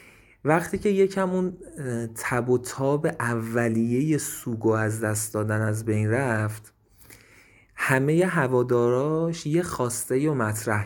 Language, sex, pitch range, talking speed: Persian, male, 105-130 Hz, 115 wpm